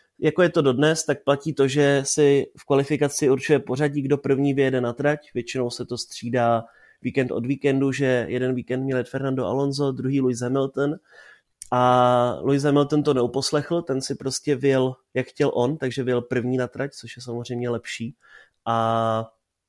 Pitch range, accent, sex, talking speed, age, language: 125-145 Hz, native, male, 175 wpm, 30-49, Czech